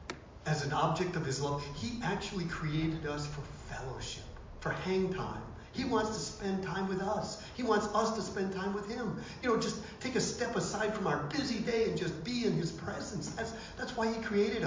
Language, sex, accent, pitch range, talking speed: English, male, American, 120-165 Hz, 215 wpm